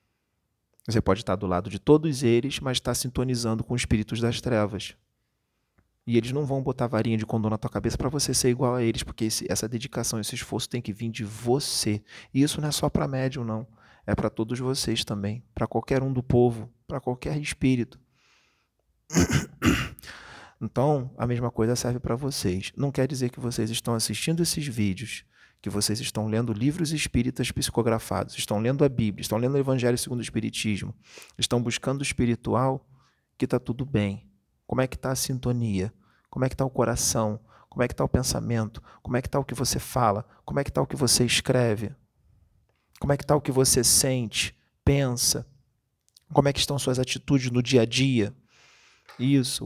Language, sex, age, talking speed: Portuguese, male, 40-59, 195 wpm